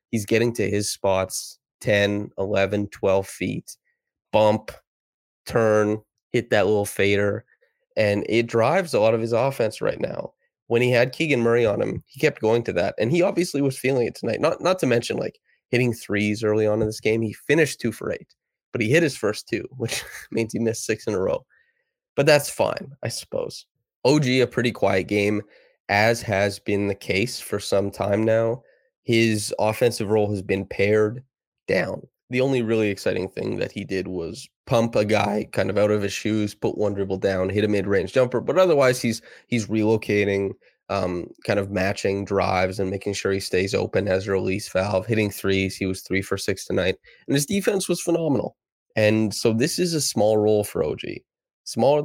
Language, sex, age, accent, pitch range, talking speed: English, male, 20-39, American, 100-120 Hz, 195 wpm